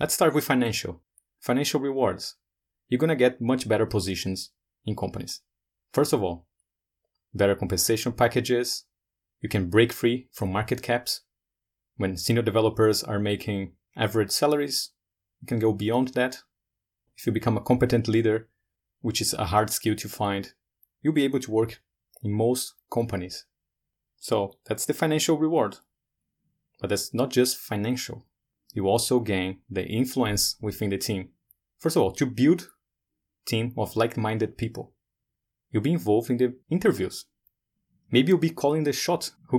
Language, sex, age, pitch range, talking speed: English, male, 30-49, 100-130 Hz, 155 wpm